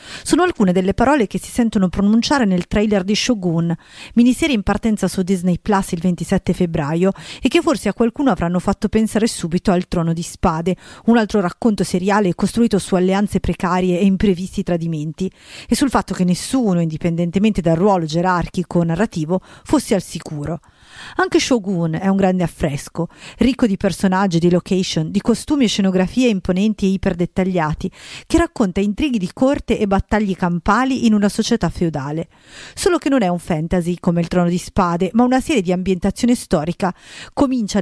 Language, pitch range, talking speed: Italian, 175-220 Hz, 170 wpm